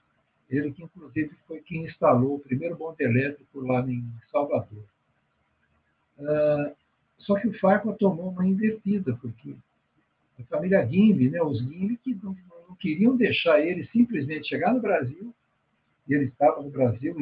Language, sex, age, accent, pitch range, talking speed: Portuguese, male, 60-79, Brazilian, 135-200 Hz, 145 wpm